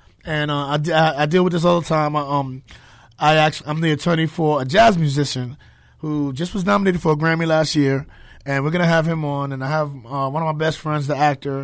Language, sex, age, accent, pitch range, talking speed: English, male, 30-49, American, 135-175 Hz, 230 wpm